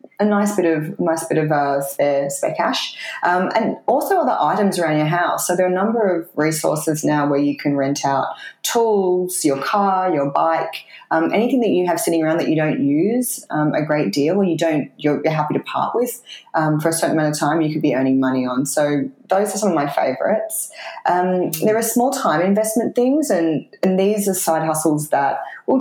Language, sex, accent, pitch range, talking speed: English, female, Australian, 140-185 Hz, 220 wpm